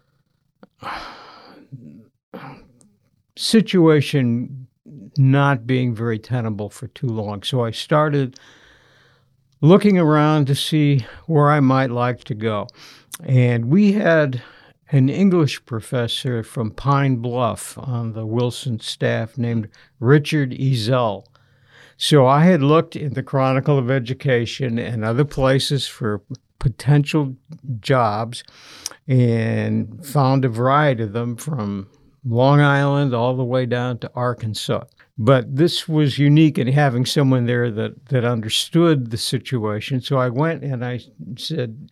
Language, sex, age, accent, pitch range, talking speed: English, male, 60-79, American, 120-145 Hz, 125 wpm